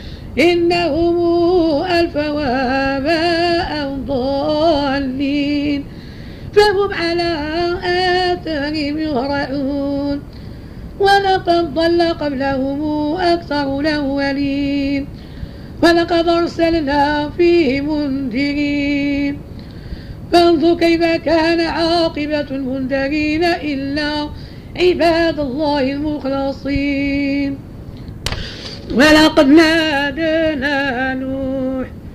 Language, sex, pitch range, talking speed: Arabic, female, 275-325 Hz, 55 wpm